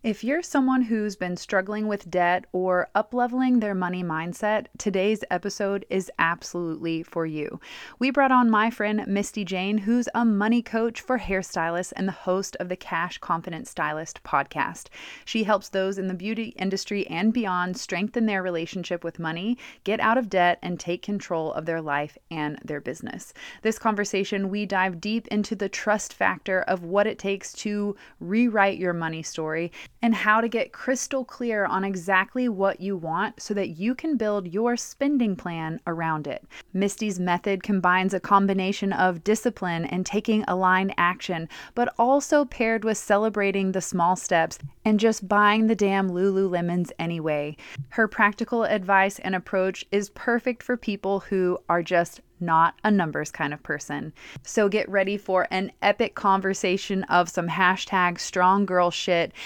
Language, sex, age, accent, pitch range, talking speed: English, female, 30-49, American, 180-220 Hz, 165 wpm